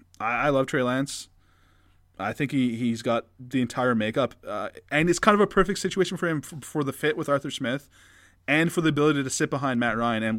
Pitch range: 115-175 Hz